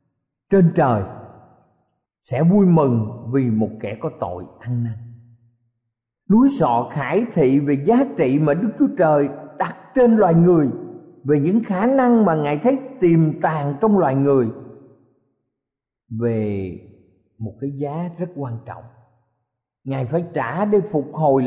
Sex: male